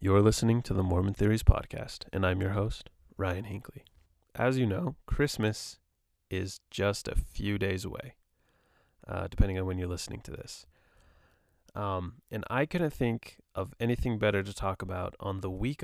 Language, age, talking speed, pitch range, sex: English, 20-39, 170 wpm, 95-110 Hz, male